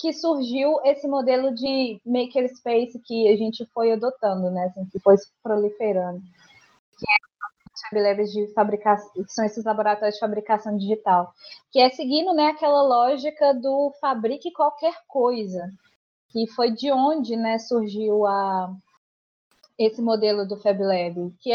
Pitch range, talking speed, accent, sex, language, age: 210-280 Hz, 135 wpm, Brazilian, female, Portuguese, 20-39